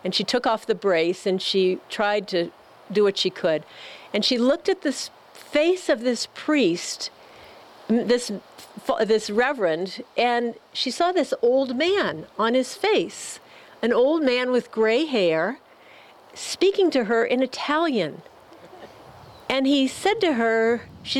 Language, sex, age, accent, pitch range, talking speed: English, female, 50-69, American, 220-275 Hz, 145 wpm